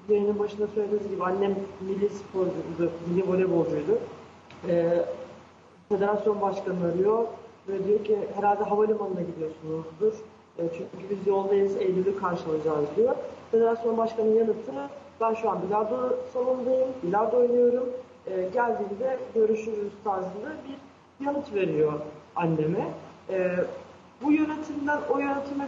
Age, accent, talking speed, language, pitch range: 40-59, native, 110 wpm, Turkish, 185-235 Hz